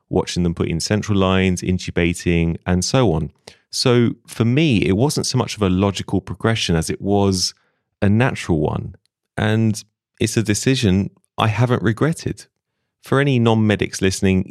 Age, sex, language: 30-49, male, English